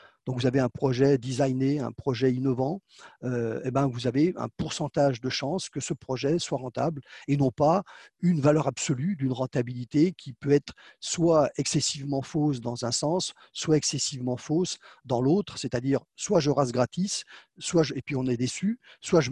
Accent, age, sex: French, 50-69, male